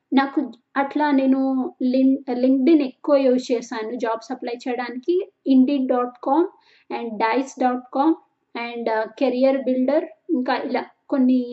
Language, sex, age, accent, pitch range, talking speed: Telugu, female, 20-39, native, 245-285 Hz, 130 wpm